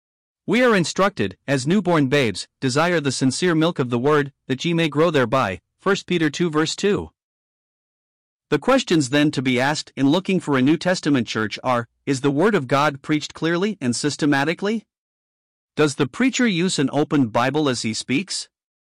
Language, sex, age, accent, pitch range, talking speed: English, male, 50-69, American, 130-165 Hz, 180 wpm